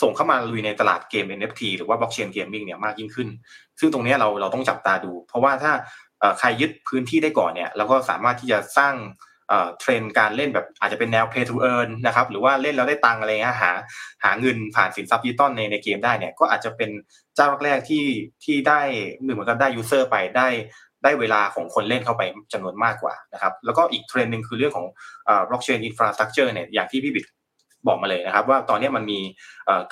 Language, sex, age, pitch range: Thai, male, 20-39, 110-140 Hz